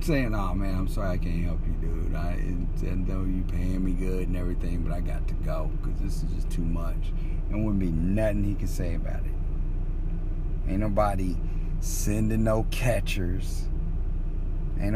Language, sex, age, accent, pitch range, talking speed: English, male, 50-69, American, 80-105 Hz, 175 wpm